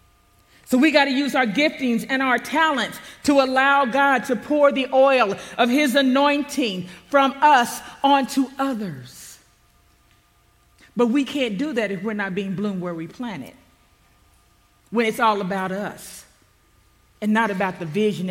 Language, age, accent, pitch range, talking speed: English, 40-59, American, 180-265 Hz, 155 wpm